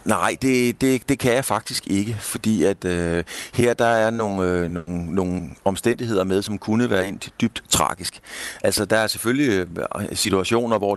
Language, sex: Danish, male